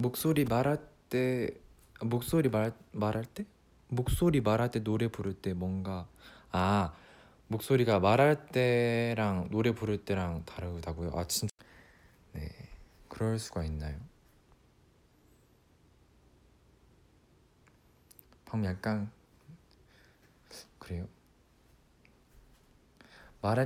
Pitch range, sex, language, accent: 90-135 Hz, male, Korean, native